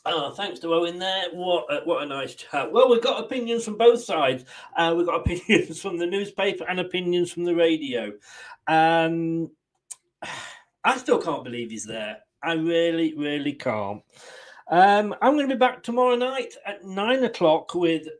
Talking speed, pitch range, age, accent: 175 wpm, 150-190 Hz, 40-59, British